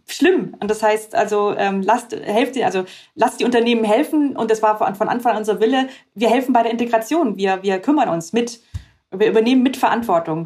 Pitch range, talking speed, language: 195-260 Hz, 205 wpm, German